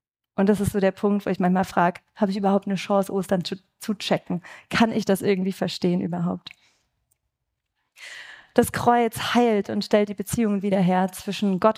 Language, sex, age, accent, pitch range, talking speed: German, female, 30-49, German, 190-220 Hz, 185 wpm